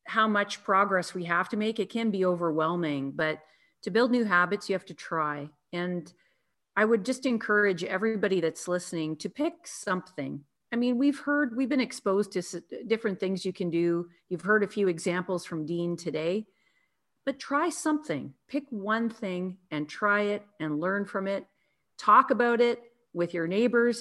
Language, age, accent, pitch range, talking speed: English, 40-59, American, 170-225 Hz, 175 wpm